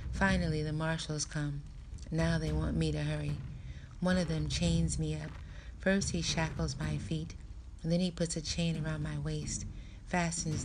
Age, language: 30-49, English